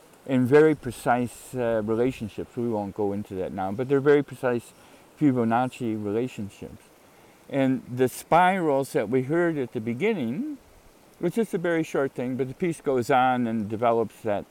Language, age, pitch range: English, 50-69, 115-150 Hz